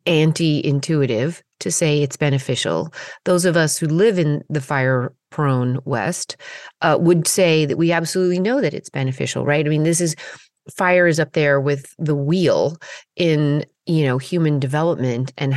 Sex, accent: female, American